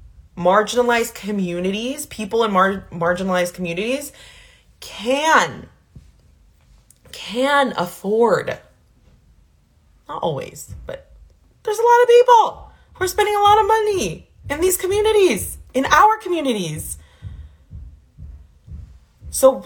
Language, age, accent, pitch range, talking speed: English, 20-39, American, 155-250 Hz, 95 wpm